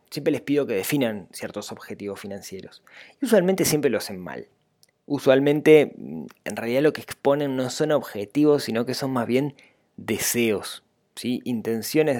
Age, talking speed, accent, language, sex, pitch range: 20-39, 150 wpm, Argentinian, Spanish, male, 115-150 Hz